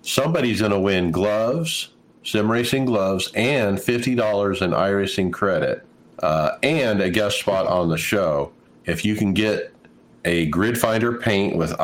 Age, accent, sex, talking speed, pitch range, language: 50-69, American, male, 145 wpm, 85-110 Hz, English